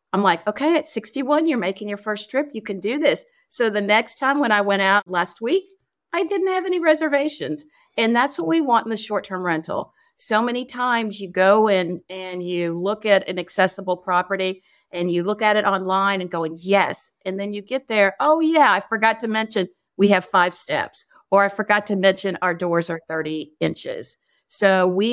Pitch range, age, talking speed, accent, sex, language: 180-225 Hz, 50-69, 210 wpm, American, female, English